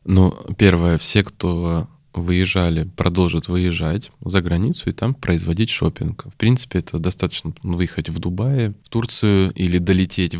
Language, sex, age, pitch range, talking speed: Russian, male, 20-39, 90-105 Hz, 145 wpm